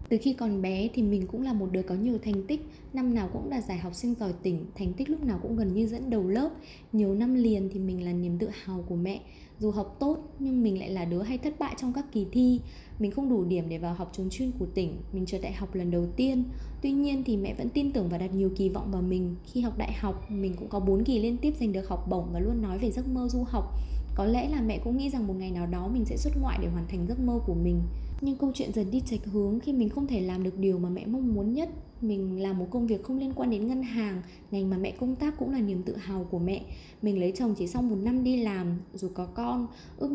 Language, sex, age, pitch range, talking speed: Vietnamese, female, 20-39, 190-250 Hz, 285 wpm